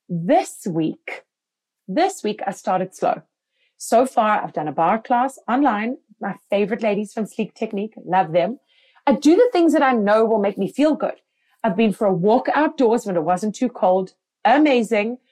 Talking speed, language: 185 wpm, English